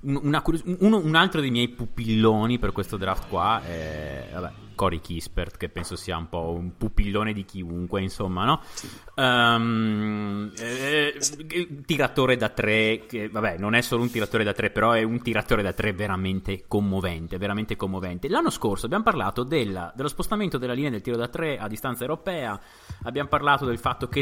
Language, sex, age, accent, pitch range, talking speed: Italian, male, 30-49, native, 100-145 Hz, 185 wpm